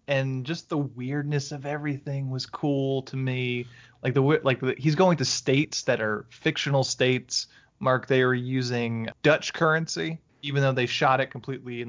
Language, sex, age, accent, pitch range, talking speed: English, male, 20-39, American, 120-160 Hz, 175 wpm